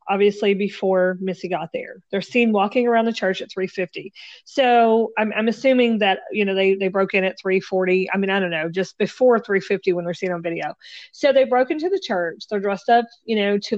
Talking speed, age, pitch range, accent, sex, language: 225 wpm, 40-59, 185-225 Hz, American, female, English